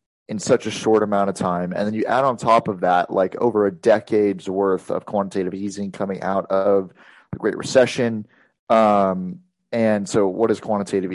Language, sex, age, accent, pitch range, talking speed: English, male, 30-49, American, 95-115 Hz, 190 wpm